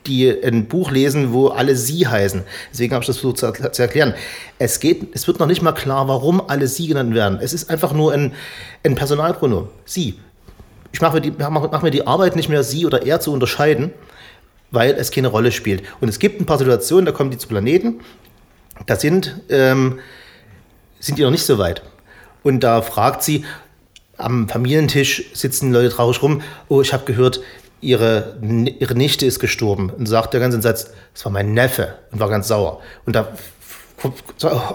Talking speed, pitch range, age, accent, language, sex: 195 wpm, 115-150 Hz, 40-59, German, German, male